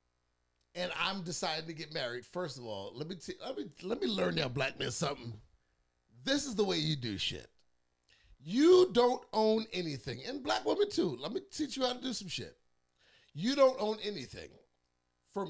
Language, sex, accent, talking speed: English, male, American, 195 wpm